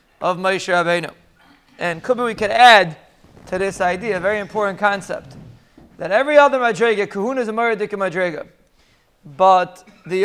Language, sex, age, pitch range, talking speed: English, male, 30-49, 195-245 Hz, 145 wpm